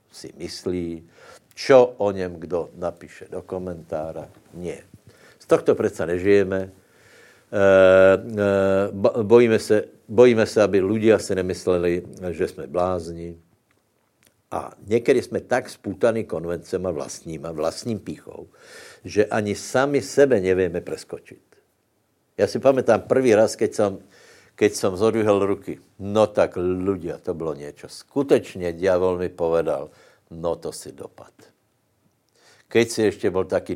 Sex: male